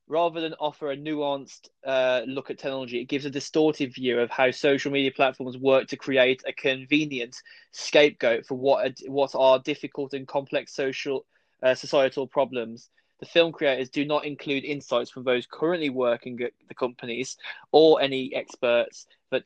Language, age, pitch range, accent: English, 20-39, 130-150 Hz, British